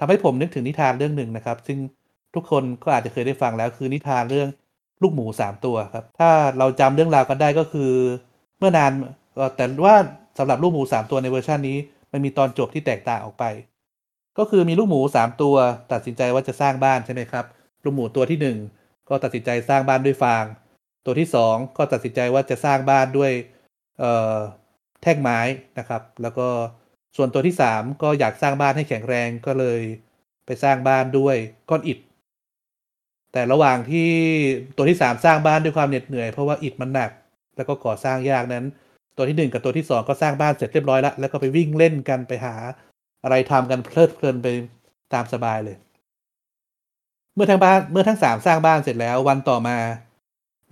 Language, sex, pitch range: Thai, male, 125-145 Hz